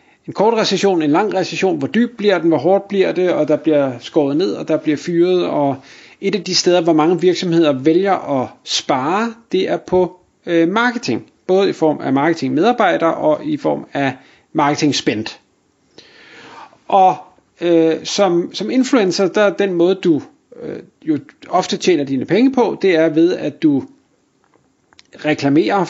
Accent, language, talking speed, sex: native, Danish, 165 wpm, male